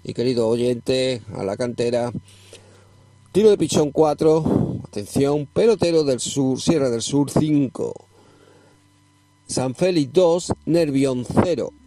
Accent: Spanish